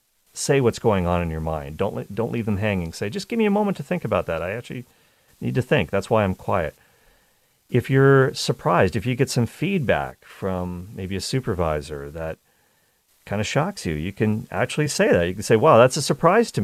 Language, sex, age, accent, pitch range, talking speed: English, male, 40-59, American, 90-130 Hz, 220 wpm